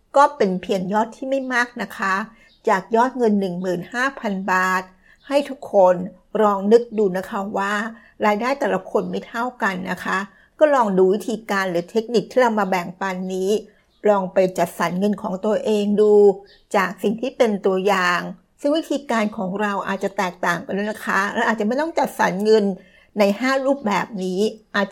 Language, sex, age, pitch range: Thai, female, 60-79, 195-235 Hz